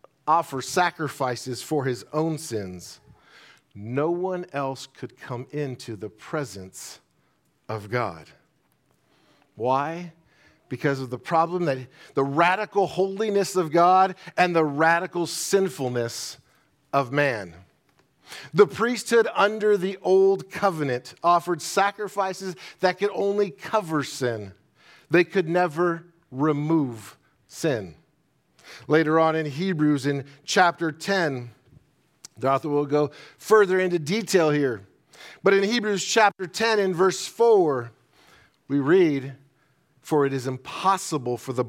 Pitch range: 135-185 Hz